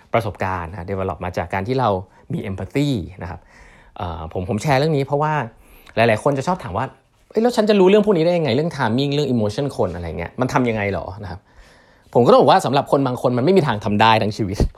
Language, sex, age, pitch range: Thai, male, 20-39, 100-140 Hz